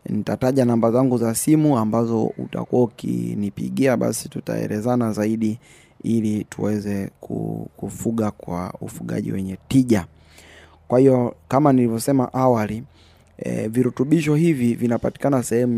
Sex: male